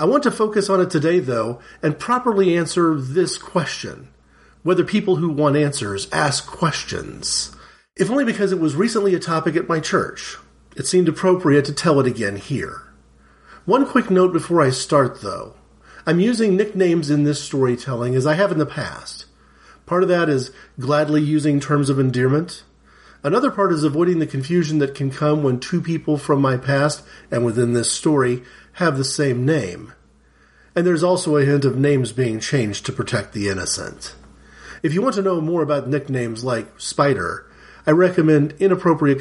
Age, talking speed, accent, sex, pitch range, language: 40-59, 180 wpm, American, male, 125-170 Hz, English